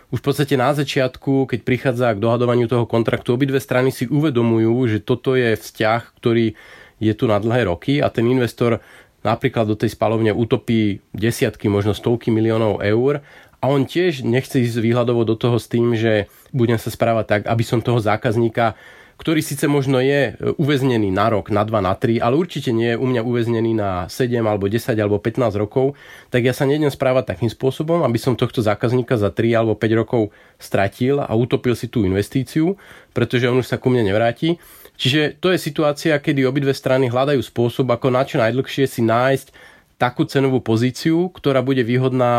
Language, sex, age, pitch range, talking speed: Slovak, male, 30-49, 110-135 Hz, 185 wpm